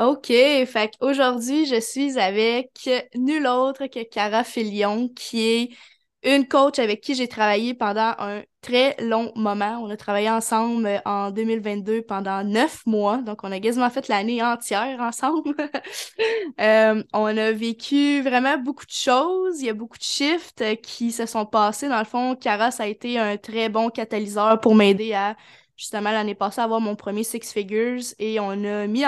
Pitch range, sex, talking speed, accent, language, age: 210-245 Hz, female, 175 wpm, Canadian, French, 10-29